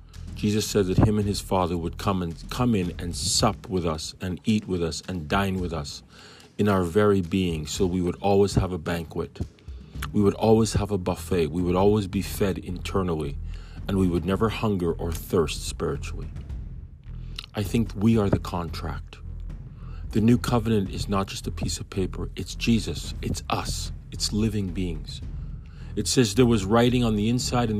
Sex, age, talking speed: male, 40-59, 185 wpm